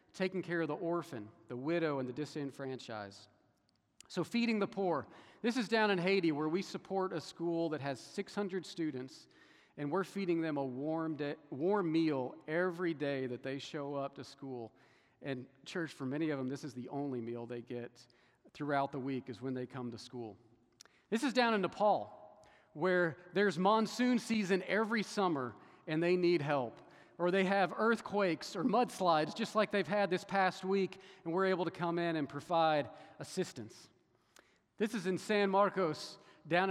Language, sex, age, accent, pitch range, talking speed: English, male, 40-59, American, 145-195 Hz, 180 wpm